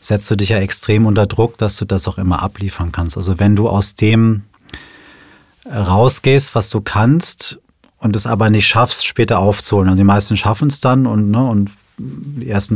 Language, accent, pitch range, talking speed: German, German, 100-120 Hz, 195 wpm